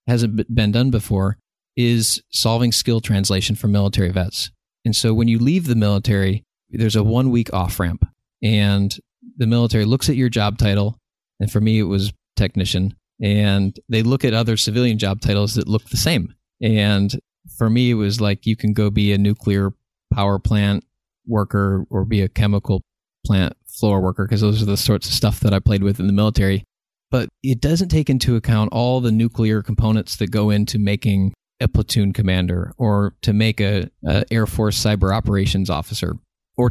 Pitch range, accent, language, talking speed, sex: 100-115 Hz, American, English, 180 wpm, male